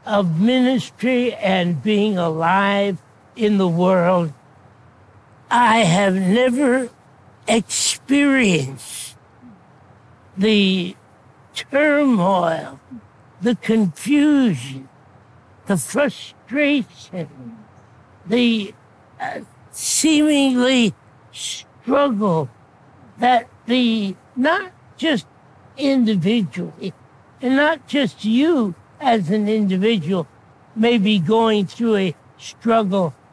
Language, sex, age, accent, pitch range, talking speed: English, male, 60-79, American, 170-255 Hz, 70 wpm